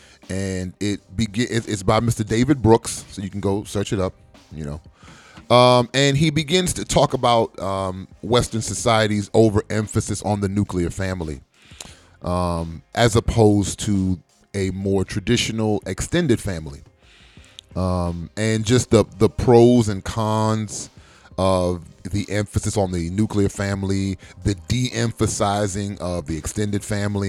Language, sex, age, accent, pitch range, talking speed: English, male, 30-49, American, 90-115 Hz, 135 wpm